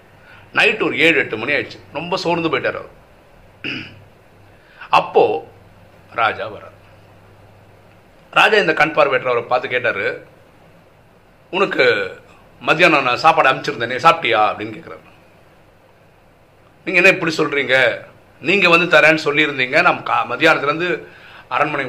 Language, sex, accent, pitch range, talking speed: Tamil, male, native, 135-185 Hz, 110 wpm